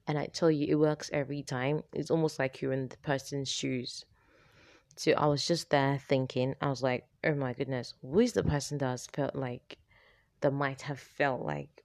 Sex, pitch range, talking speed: female, 130-150 Hz, 210 wpm